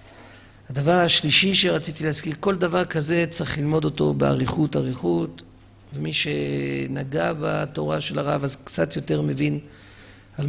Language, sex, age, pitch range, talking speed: Hebrew, male, 50-69, 100-155 Hz, 125 wpm